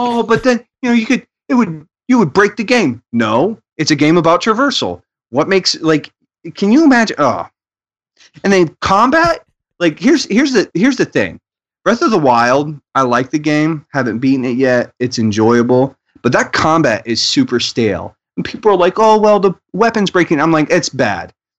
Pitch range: 120-195 Hz